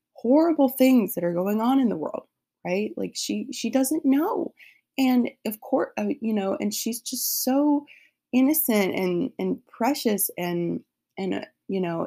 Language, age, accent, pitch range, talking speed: English, 20-39, American, 175-230 Hz, 170 wpm